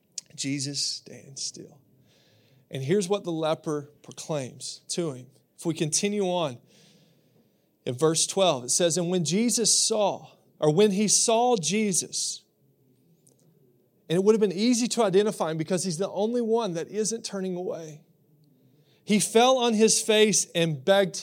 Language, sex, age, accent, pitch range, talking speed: English, male, 30-49, American, 165-225 Hz, 155 wpm